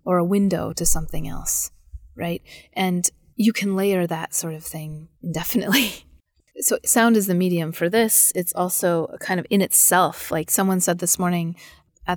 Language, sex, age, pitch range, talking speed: English, female, 30-49, 160-180 Hz, 180 wpm